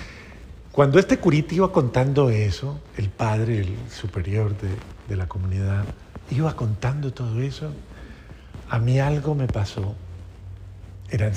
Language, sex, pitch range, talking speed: Spanish, male, 100-145 Hz, 125 wpm